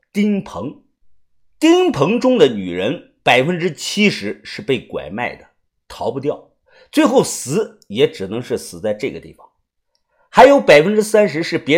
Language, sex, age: Chinese, male, 50-69